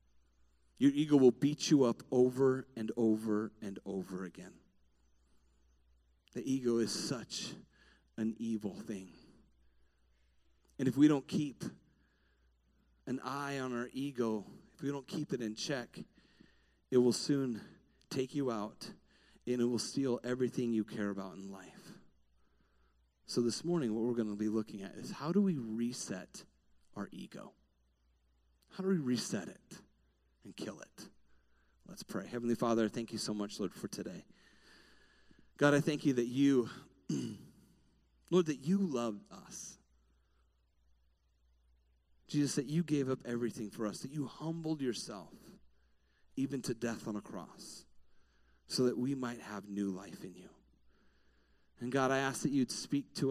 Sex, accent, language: male, American, English